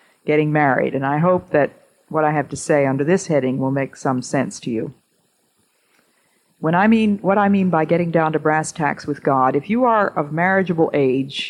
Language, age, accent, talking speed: English, 50-69, American, 210 wpm